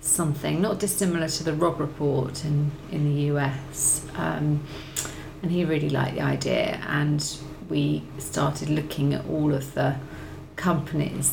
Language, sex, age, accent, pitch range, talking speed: English, female, 40-59, British, 145-165 Hz, 145 wpm